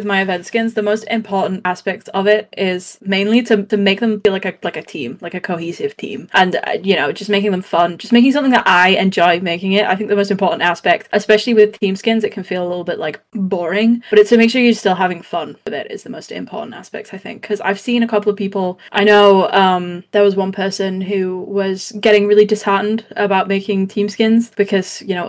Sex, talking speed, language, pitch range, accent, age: female, 245 wpm, English, 190-220 Hz, British, 10-29